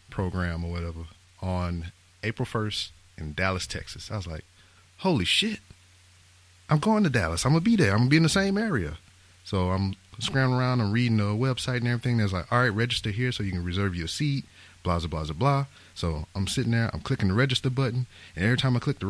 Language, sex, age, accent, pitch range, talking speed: English, male, 30-49, American, 90-120 Hz, 220 wpm